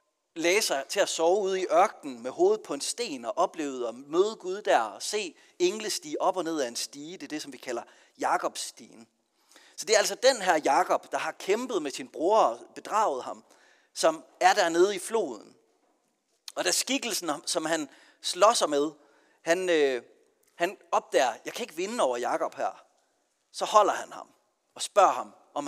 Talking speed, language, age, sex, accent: 195 wpm, Danish, 40-59, male, native